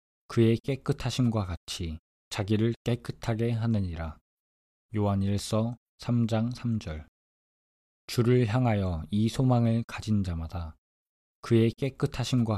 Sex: male